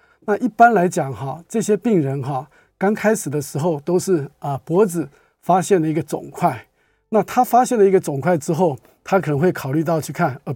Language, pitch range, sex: Chinese, 150-195 Hz, male